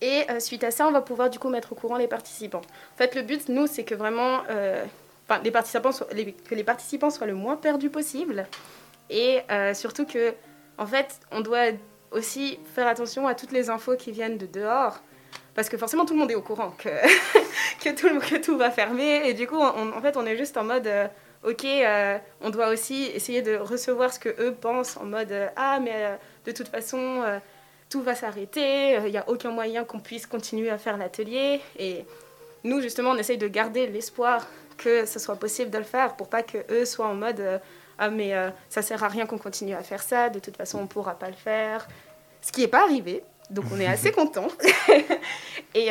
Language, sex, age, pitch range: French, female, 20-39, 215-260 Hz